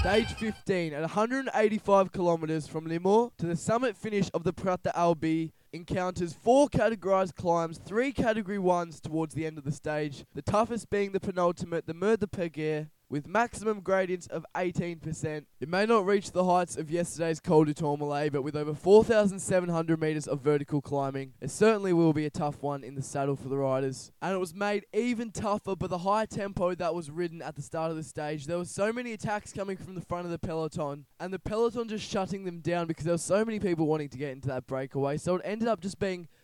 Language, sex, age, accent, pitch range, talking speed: English, male, 10-29, Australian, 150-195 Hz, 210 wpm